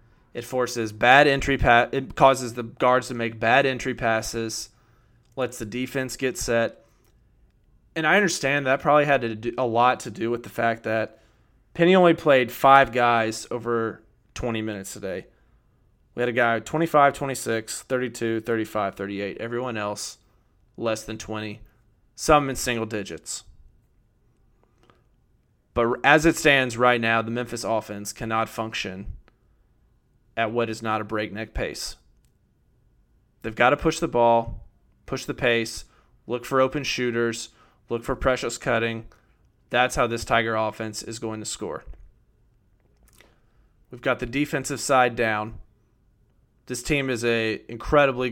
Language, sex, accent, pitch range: English, male, American, 110-125 Hz